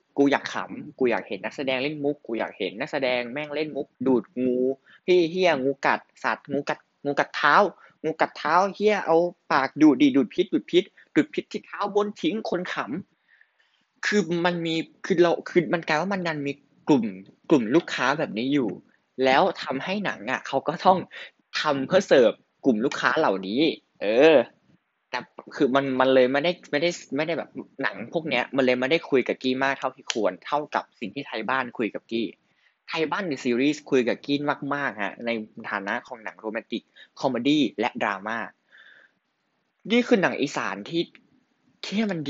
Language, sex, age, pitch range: Thai, male, 20-39, 130-175 Hz